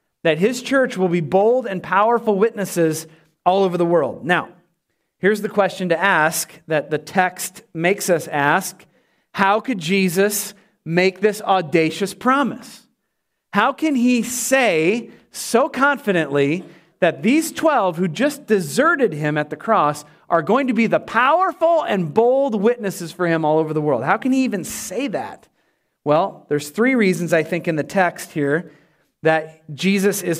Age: 40-59